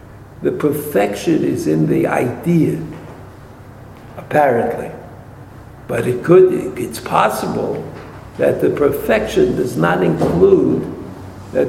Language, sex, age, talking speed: English, male, 60-79, 100 wpm